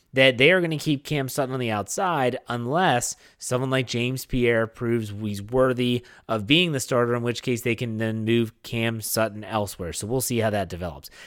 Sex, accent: male, American